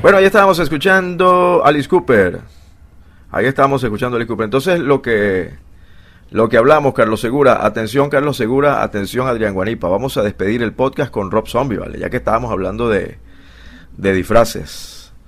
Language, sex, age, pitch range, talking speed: English, male, 30-49, 100-140 Hz, 170 wpm